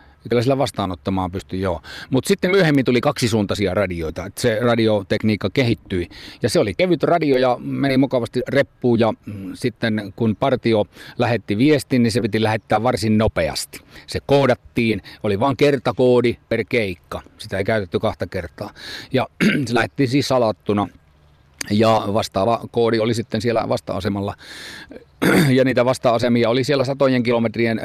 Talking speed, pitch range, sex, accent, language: 145 wpm, 100-125 Hz, male, native, Finnish